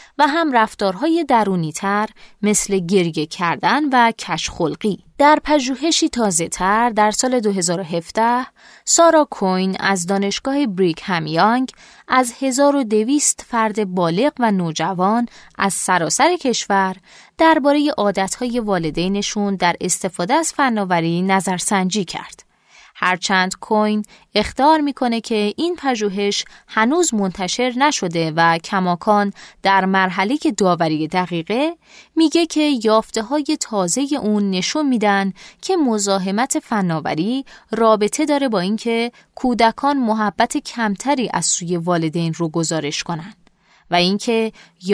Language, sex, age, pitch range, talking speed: Persian, female, 20-39, 180-250 Hz, 115 wpm